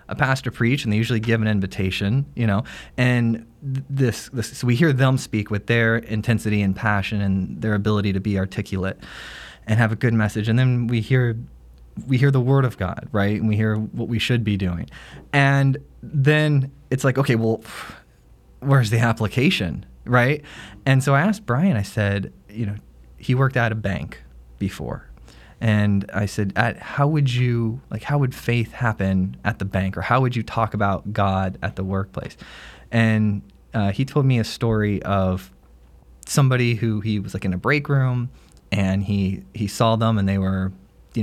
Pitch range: 95-125 Hz